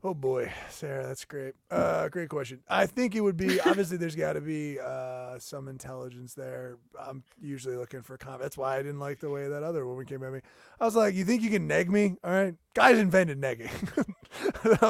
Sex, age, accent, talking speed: male, 30-49, American, 220 wpm